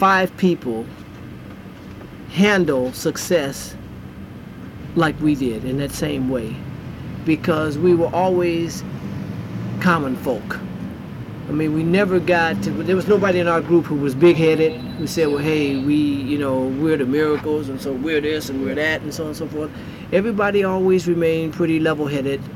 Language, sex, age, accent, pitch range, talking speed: English, male, 40-59, American, 145-175 Hz, 165 wpm